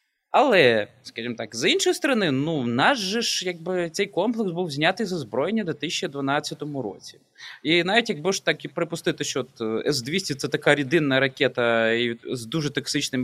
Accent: native